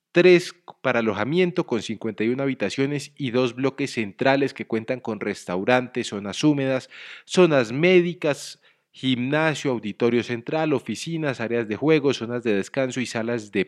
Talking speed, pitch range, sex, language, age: 135 wpm, 120-170 Hz, male, Spanish, 40-59